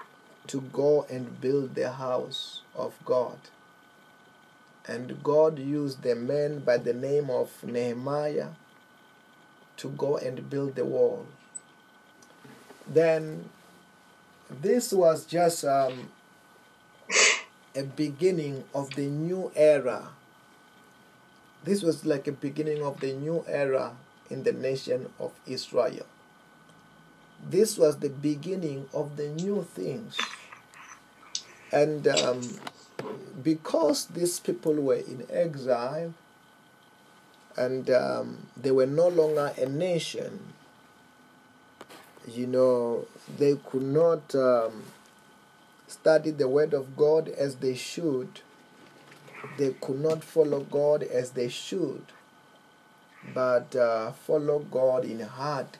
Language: English